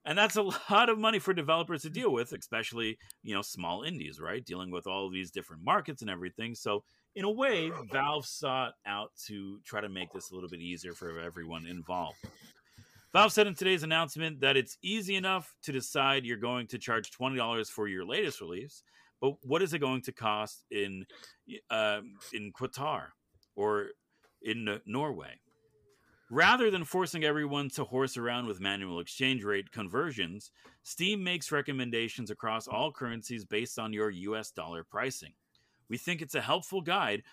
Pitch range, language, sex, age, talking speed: 105-160 Hz, English, male, 40-59, 175 wpm